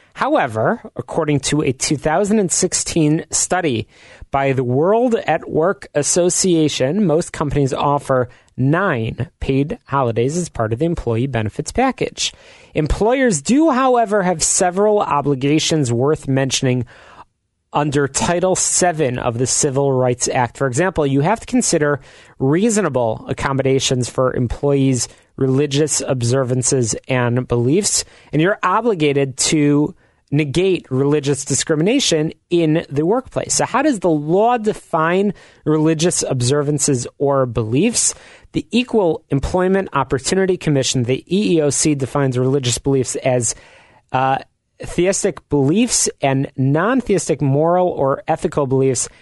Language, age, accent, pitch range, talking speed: English, 30-49, American, 130-170 Hz, 115 wpm